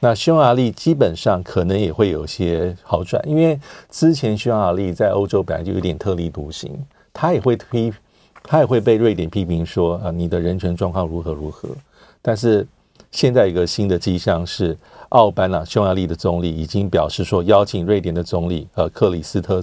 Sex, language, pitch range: male, Chinese, 85-110 Hz